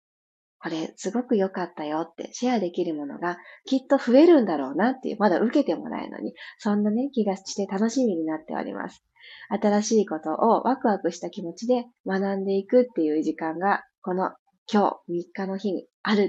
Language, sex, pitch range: Japanese, female, 185-255 Hz